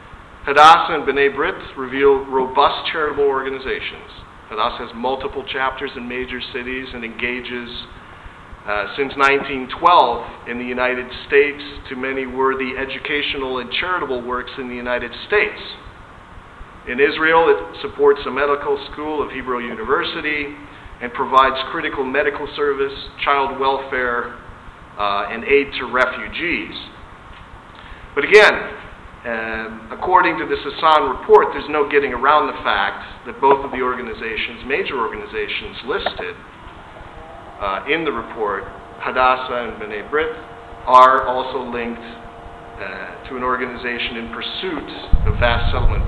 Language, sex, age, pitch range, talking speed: English, male, 50-69, 110-145 Hz, 130 wpm